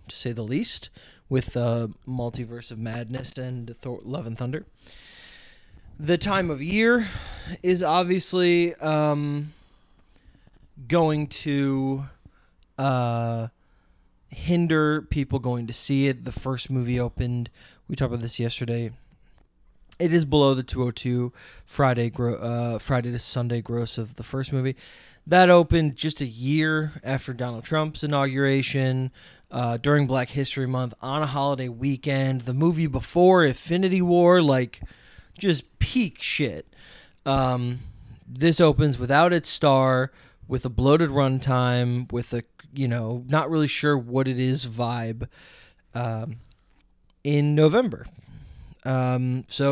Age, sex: 20-39, male